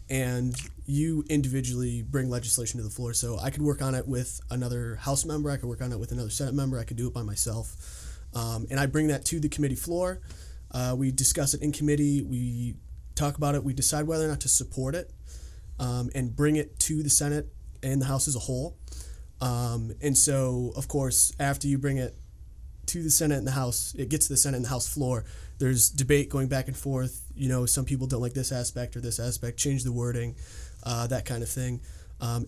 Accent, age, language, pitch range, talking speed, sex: American, 20-39, English, 115-135 Hz, 225 wpm, male